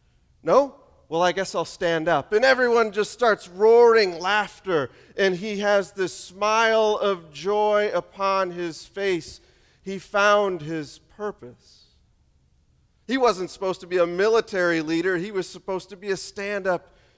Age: 40-59